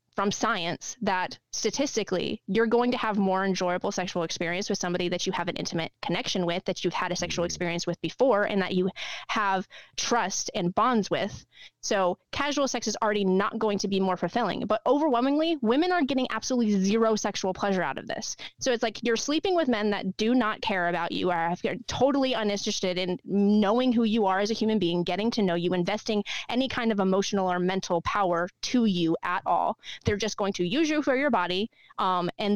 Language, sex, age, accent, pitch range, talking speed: English, female, 20-39, American, 185-250 Hz, 205 wpm